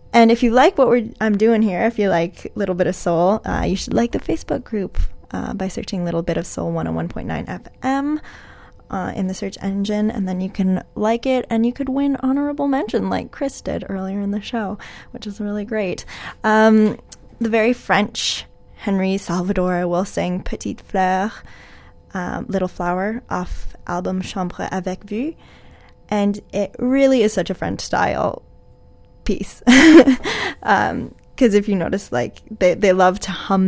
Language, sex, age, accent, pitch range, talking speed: English, female, 10-29, American, 185-230 Hz, 175 wpm